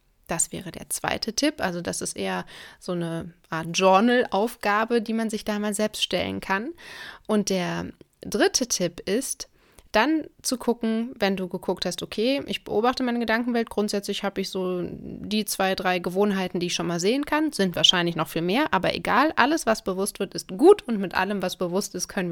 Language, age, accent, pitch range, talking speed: German, 20-39, German, 185-225 Hz, 195 wpm